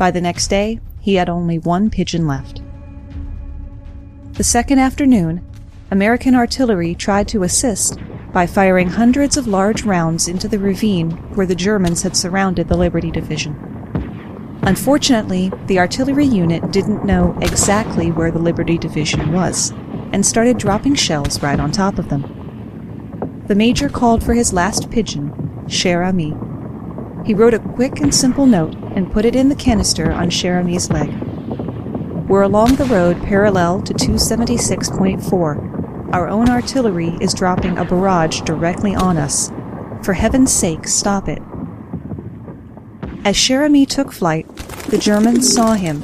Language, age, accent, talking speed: English, 30-49, American, 145 wpm